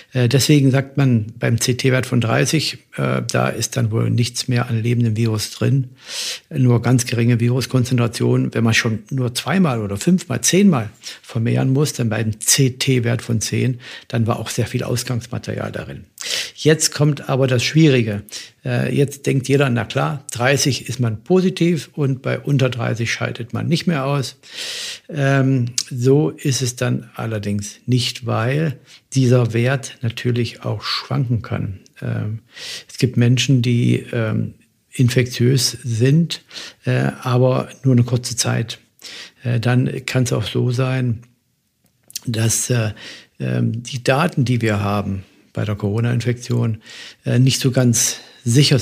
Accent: German